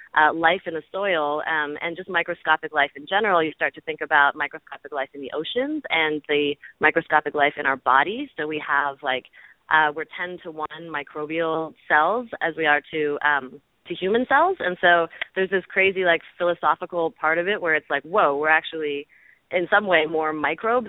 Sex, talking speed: female, 200 wpm